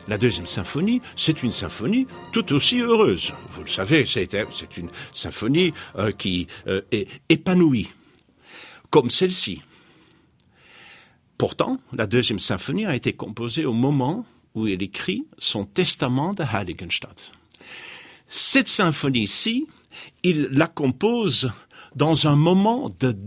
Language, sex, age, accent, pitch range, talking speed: French, male, 50-69, French, 120-185 Hz, 115 wpm